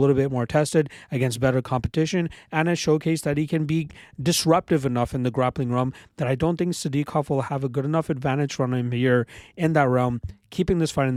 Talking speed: 220 wpm